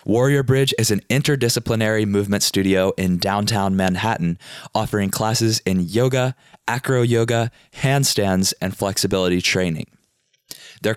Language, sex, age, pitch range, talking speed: English, male, 20-39, 95-120 Hz, 115 wpm